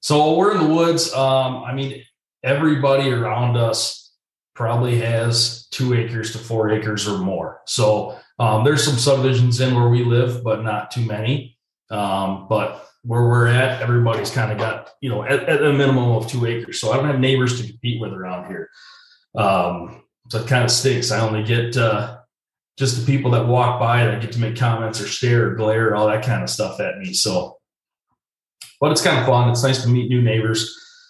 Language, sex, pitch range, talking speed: English, male, 110-130 Hz, 205 wpm